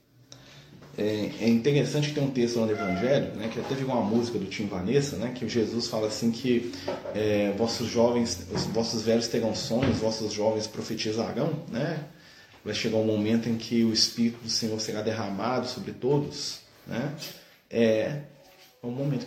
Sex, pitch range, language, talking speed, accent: male, 110-135 Hz, Portuguese, 170 wpm, Brazilian